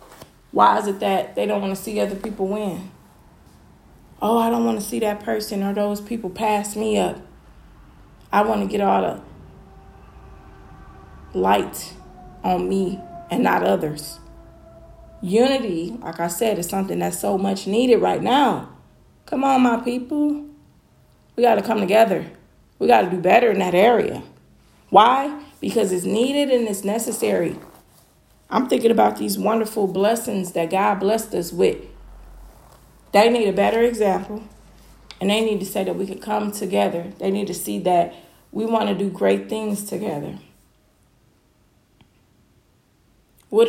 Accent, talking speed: American, 145 wpm